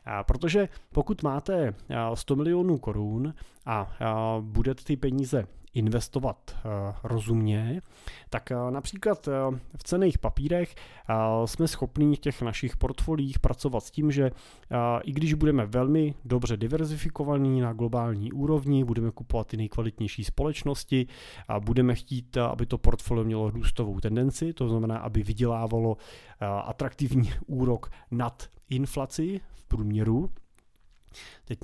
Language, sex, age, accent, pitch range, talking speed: Czech, male, 30-49, native, 110-135 Hz, 135 wpm